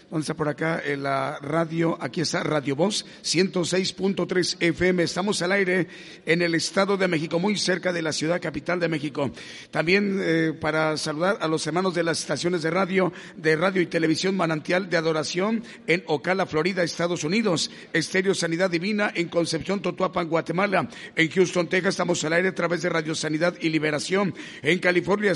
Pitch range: 165-190 Hz